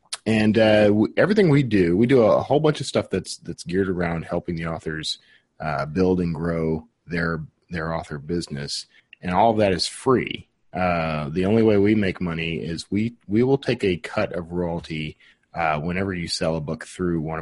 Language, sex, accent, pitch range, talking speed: English, male, American, 85-110 Hz, 200 wpm